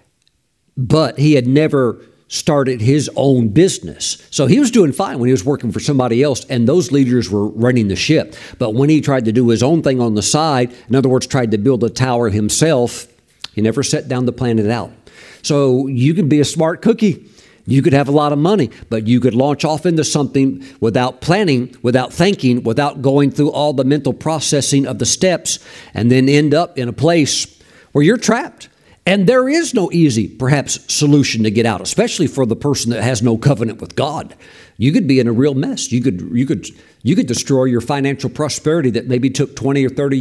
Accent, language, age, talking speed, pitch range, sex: American, English, 50-69, 215 wpm, 120-150 Hz, male